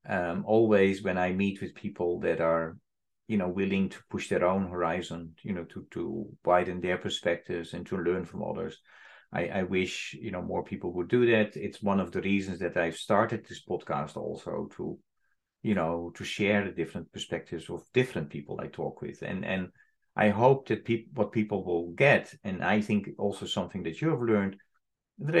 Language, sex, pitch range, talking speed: English, male, 95-115 Hz, 200 wpm